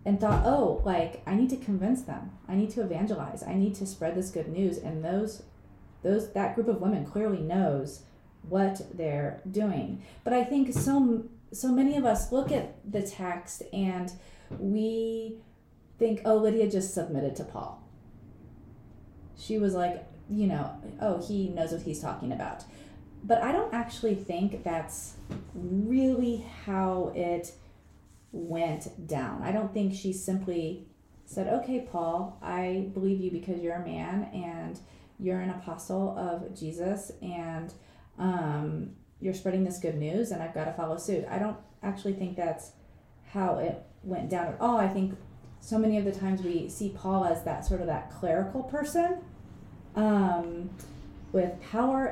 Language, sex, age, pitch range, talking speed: English, female, 30-49, 165-210 Hz, 160 wpm